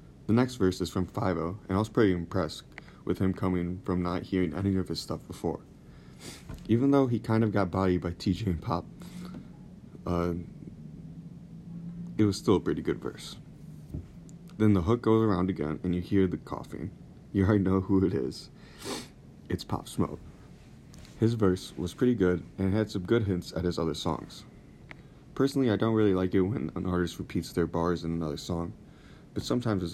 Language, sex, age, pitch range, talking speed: English, male, 30-49, 90-110 Hz, 190 wpm